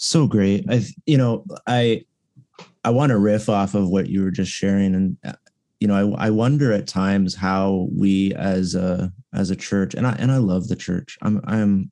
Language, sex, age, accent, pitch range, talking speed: English, male, 30-49, American, 95-115 Hz, 205 wpm